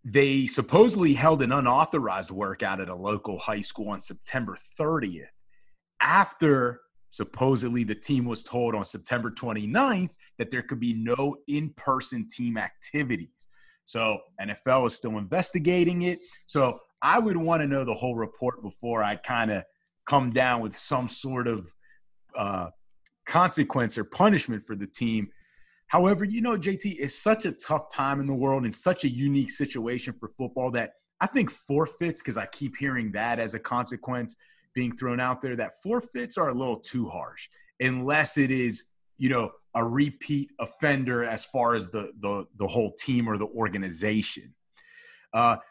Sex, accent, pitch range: male, American, 115-155 Hz